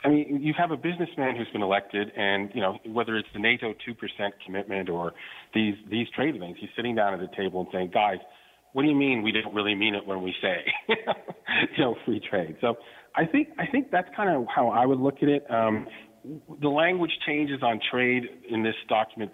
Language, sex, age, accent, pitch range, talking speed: English, male, 40-59, American, 90-120 Hz, 220 wpm